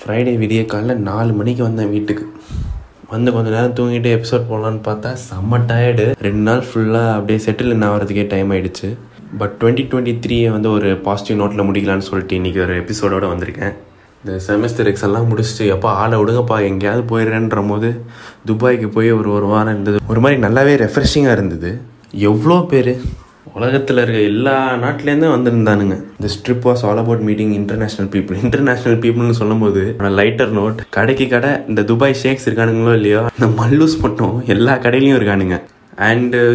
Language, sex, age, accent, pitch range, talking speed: Tamil, male, 20-39, native, 105-125 Hz, 155 wpm